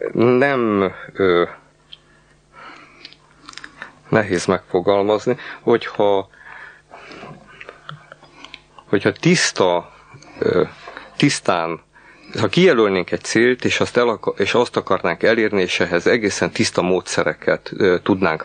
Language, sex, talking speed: Hungarian, male, 90 wpm